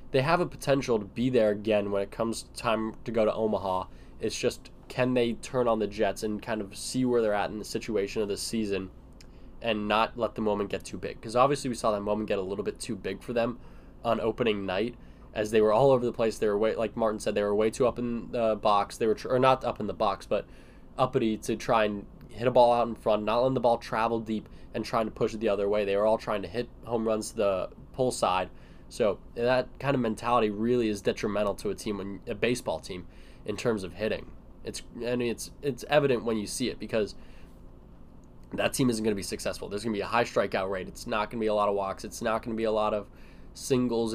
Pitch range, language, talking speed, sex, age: 105-120 Hz, English, 265 wpm, male, 10-29